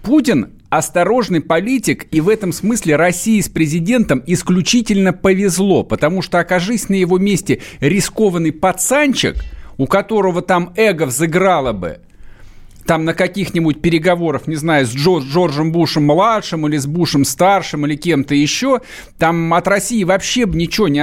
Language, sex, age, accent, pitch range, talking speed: Russian, male, 50-69, native, 155-195 Hz, 135 wpm